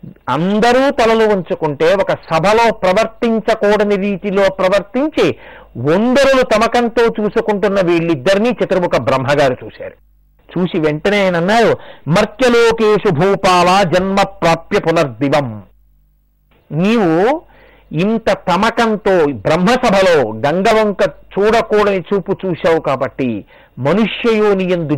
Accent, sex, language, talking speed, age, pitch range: native, male, Telugu, 85 wpm, 50-69, 170-230 Hz